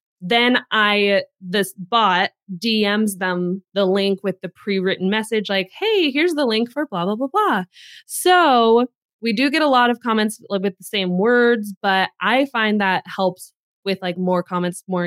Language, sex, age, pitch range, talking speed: English, female, 20-39, 185-240 Hz, 175 wpm